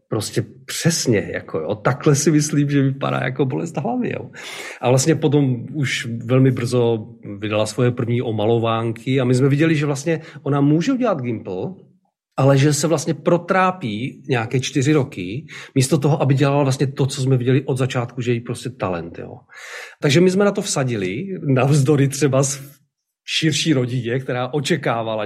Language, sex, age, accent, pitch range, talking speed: Czech, male, 40-59, native, 120-150 Hz, 170 wpm